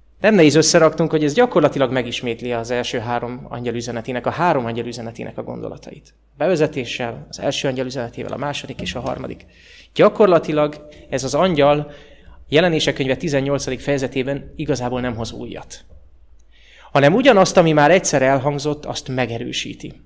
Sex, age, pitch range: male, 30-49, 120-150 Hz